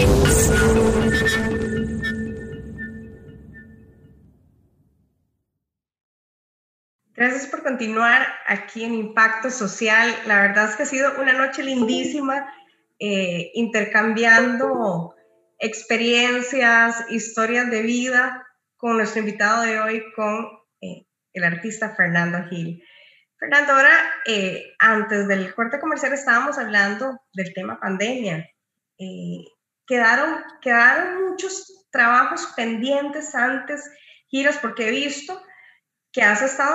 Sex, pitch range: female, 200-265 Hz